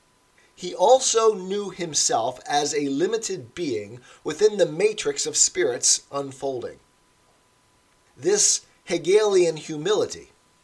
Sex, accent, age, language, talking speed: male, American, 40-59, English, 95 wpm